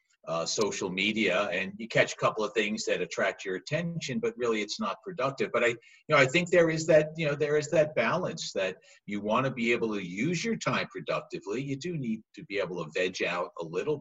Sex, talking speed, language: male, 240 wpm, English